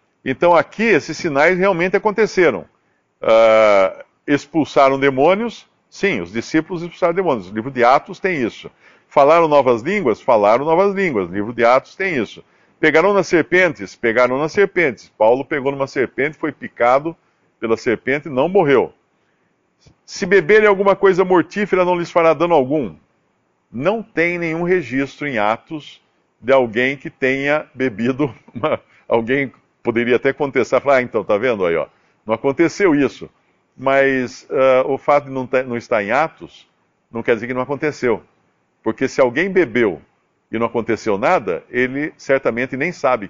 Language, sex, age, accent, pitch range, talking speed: Portuguese, male, 50-69, Brazilian, 120-170 Hz, 155 wpm